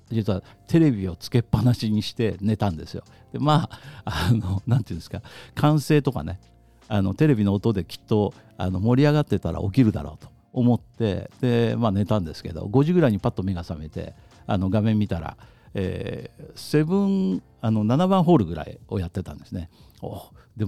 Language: Japanese